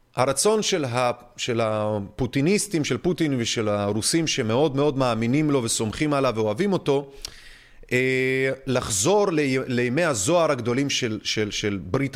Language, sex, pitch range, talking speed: Hebrew, male, 110-150 Hz, 115 wpm